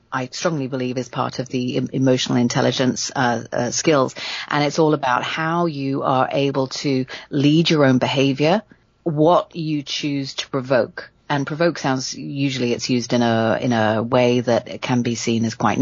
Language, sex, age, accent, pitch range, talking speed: English, female, 40-59, British, 125-155 Hz, 180 wpm